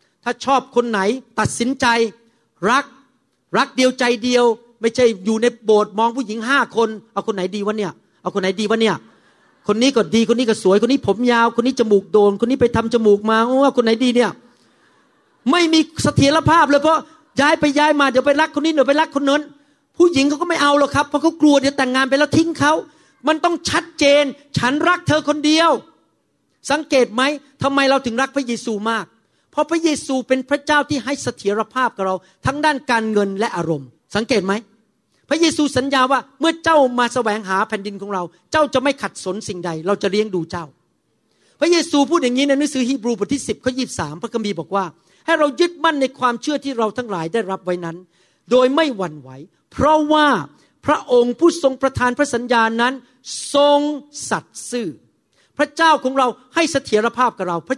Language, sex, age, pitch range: Thai, male, 40-59, 215-285 Hz